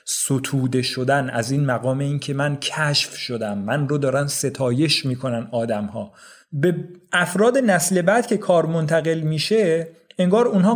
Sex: male